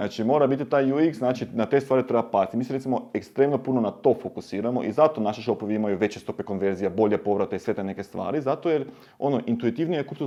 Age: 30-49